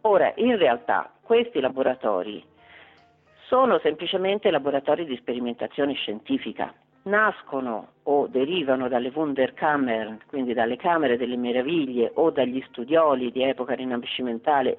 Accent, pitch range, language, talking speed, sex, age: native, 135-195 Hz, Italian, 110 wpm, female, 40-59